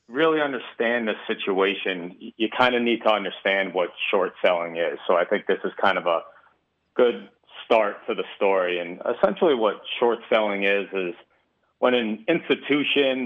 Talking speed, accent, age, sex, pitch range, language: 165 wpm, American, 30-49, male, 95-120 Hz, English